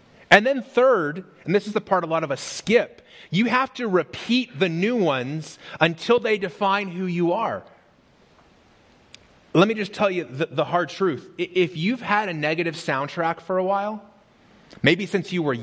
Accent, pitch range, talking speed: American, 145-205 Hz, 185 wpm